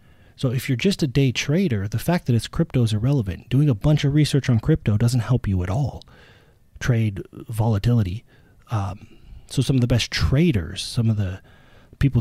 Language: English